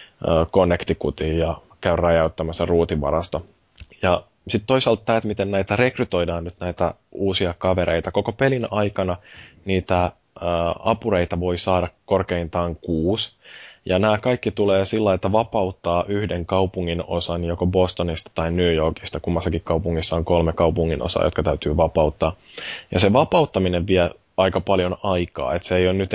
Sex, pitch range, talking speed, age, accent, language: male, 85-95 Hz, 140 wpm, 20-39, native, Finnish